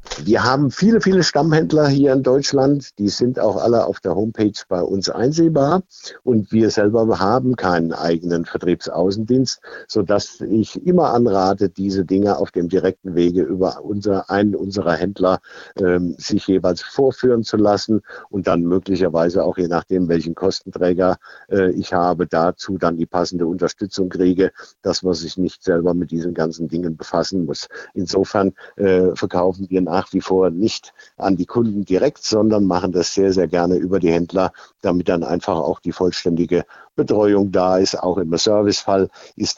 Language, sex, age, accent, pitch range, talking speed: German, male, 50-69, German, 85-105 Hz, 165 wpm